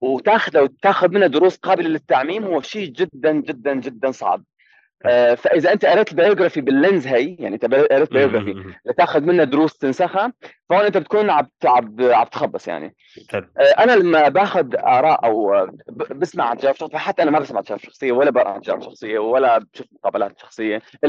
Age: 30-49